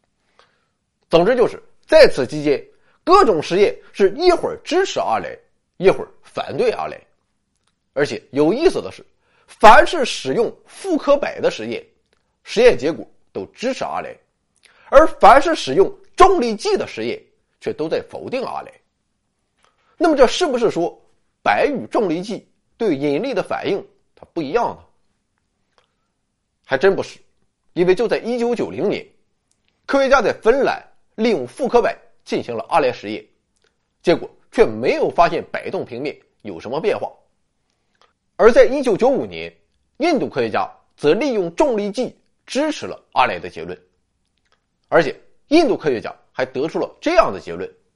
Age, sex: 30-49, male